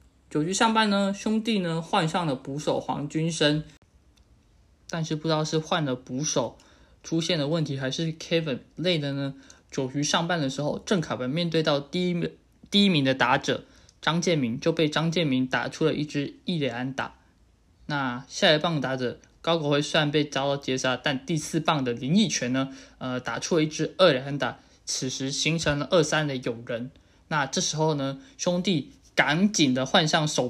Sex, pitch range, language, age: male, 130-165 Hz, Chinese, 20-39